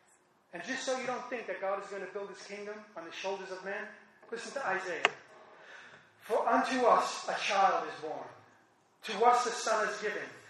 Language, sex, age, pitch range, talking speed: English, male, 30-49, 195-250 Hz, 200 wpm